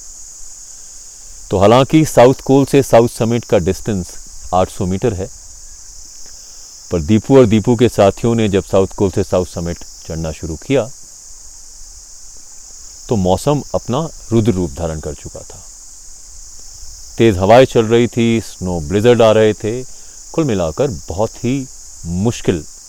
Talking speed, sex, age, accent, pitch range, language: 140 wpm, male, 40-59, native, 80-115 Hz, Hindi